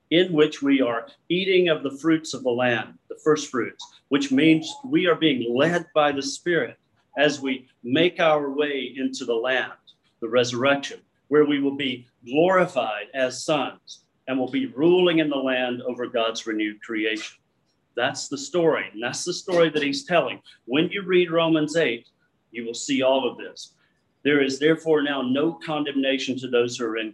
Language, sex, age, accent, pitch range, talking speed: English, male, 40-59, American, 130-160 Hz, 185 wpm